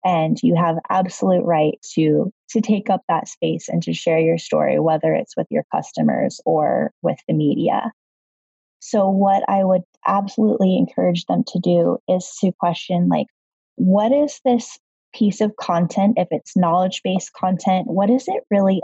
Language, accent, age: English, American, 10-29